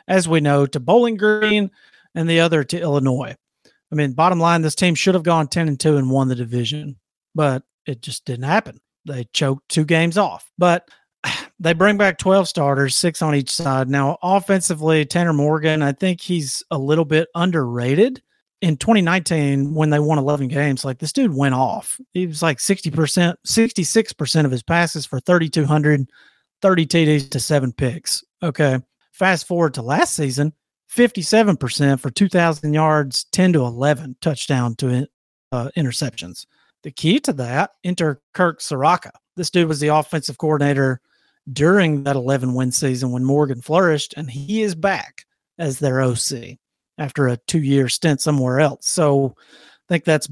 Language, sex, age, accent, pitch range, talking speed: English, male, 40-59, American, 140-170 Hz, 165 wpm